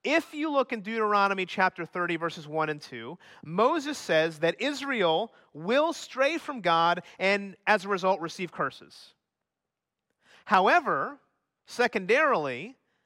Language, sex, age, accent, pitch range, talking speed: English, male, 30-49, American, 190-245 Hz, 125 wpm